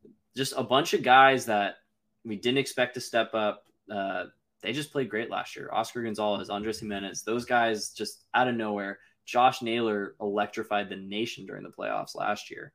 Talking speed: 185 wpm